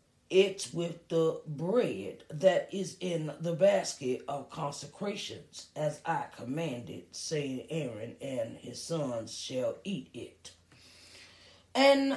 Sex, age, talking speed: female, 40-59, 115 wpm